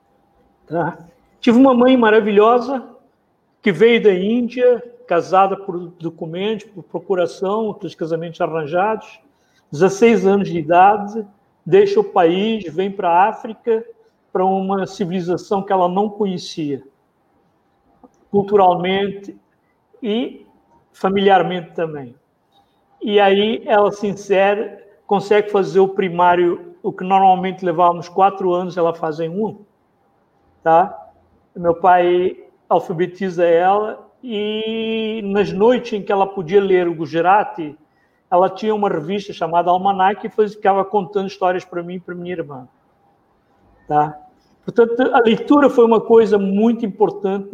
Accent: Brazilian